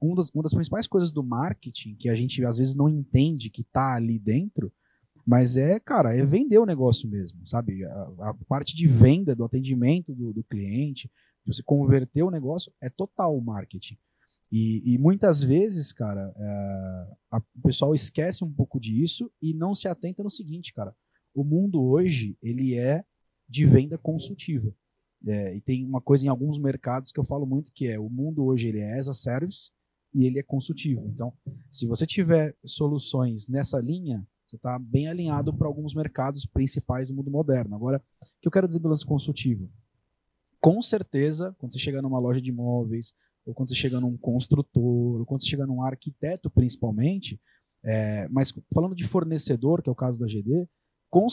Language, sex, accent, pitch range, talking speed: Portuguese, male, Brazilian, 120-160 Hz, 185 wpm